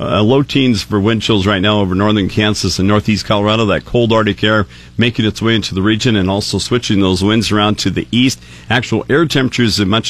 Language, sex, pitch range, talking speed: English, male, 95-120 Hz, 225 wpm